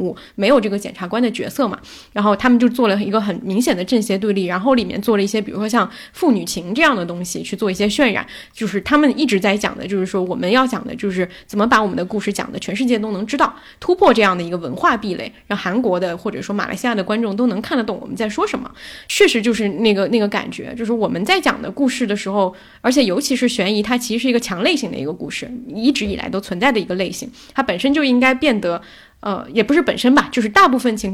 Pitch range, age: 200-260 Hz, 10-29